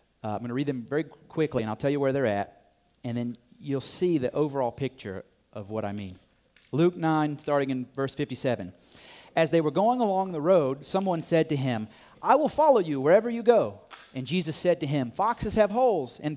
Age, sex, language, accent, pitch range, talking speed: 30-49, male, English, American, 125-175 Hz, 215 wpm